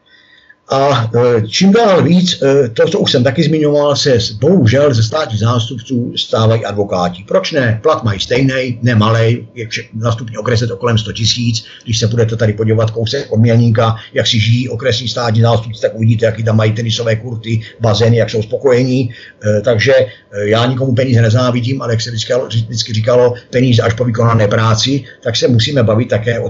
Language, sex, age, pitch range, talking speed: Czech, male, 50-69, 110-140 Hz, 175 wpm